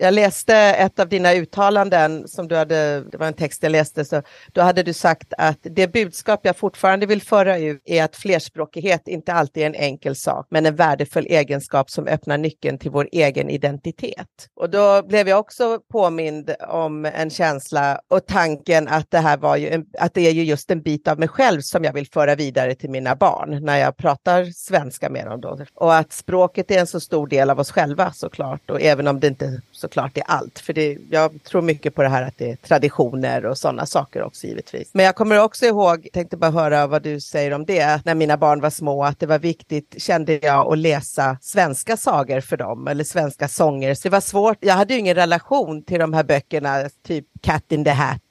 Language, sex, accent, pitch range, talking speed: Swedish, female, native, 145-180 Hz, 220 wpm